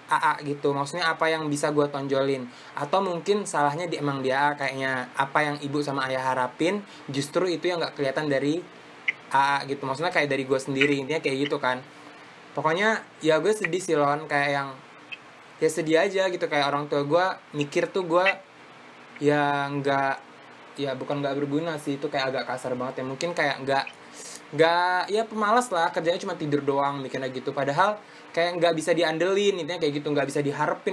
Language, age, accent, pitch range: Indonesian, 20-39, native, 140-170 Hz